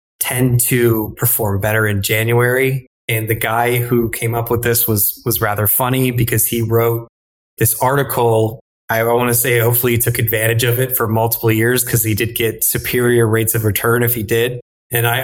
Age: 20-39